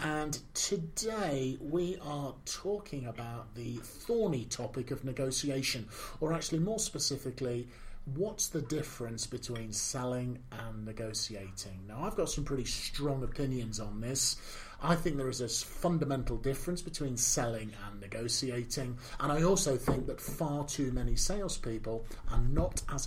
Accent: British